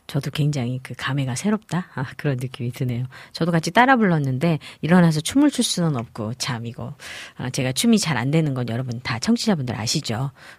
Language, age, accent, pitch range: Korean, 40-59, native, 140-185 Hz